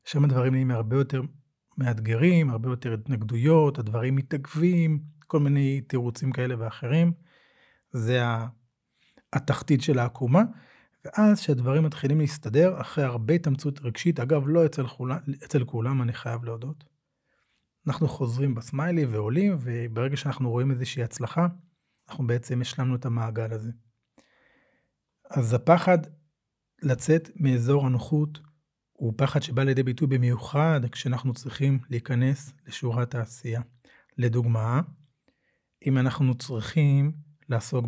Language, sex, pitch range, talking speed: Hebrew, male, 120-150 Hz, 115 wpm